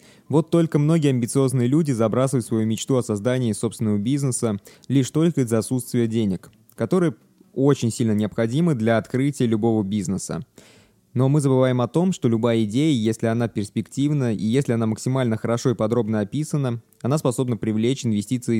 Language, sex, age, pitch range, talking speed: Russian, male, 20-39, 110-135 Hz, 155 wpm